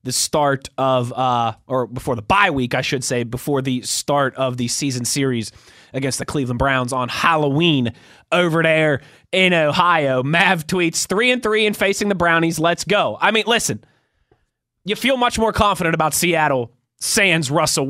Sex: male